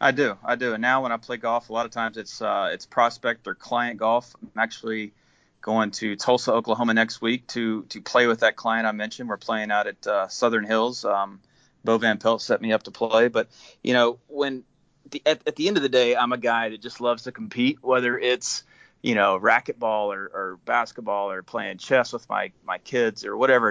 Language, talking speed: English, 230 wpm